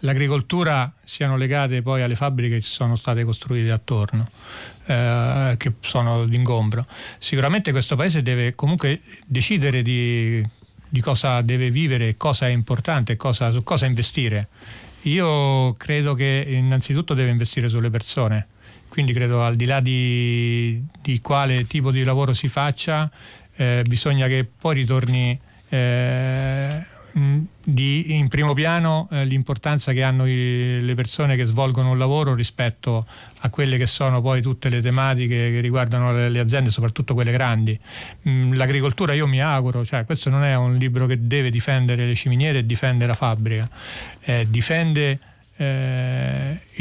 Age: 40-59